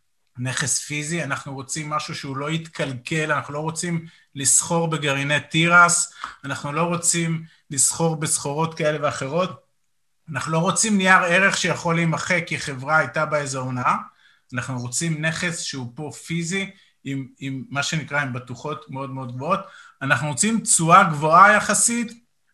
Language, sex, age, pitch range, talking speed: Hebrew, male, 30-49, 130-170 Hz, 140 wpm